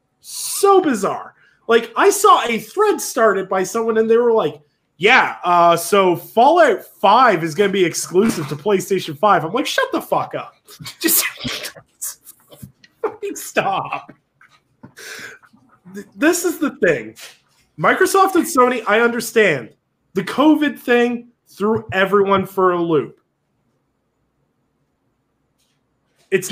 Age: 20-39